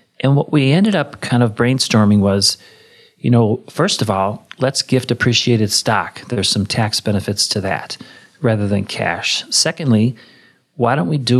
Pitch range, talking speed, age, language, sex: 105-125 Hz, 170 wpm, 40-59, English, male